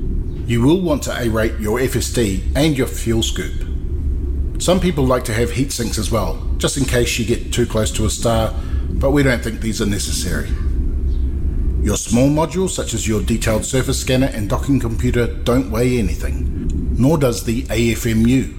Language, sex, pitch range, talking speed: English, male, 75-120 Hz, 180 wpm